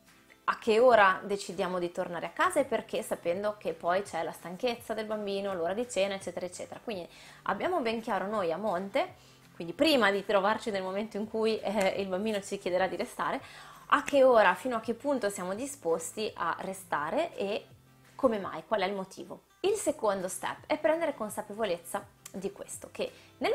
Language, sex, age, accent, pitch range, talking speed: Italian, female, 20-39, native, 180-225 Hz, 185 wpm